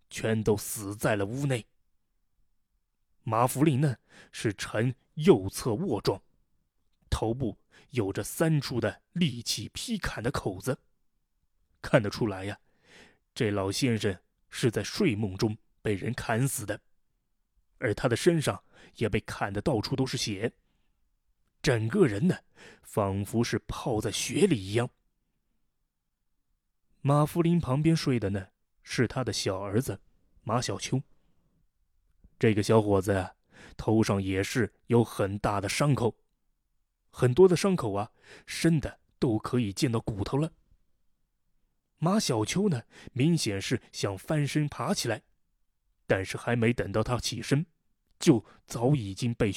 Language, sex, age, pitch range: Chinese, male, 20-39, 105-140 Hz